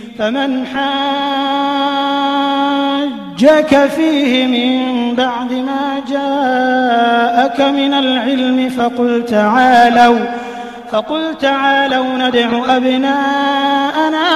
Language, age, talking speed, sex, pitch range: English, 20-39, 65 wpm, male, 240-280 Hz